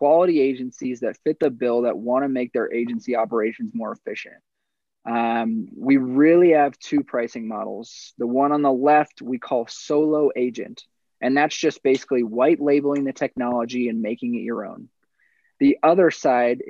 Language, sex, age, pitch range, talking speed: English, male, 20-39, 125-150 Hz, 170 wpm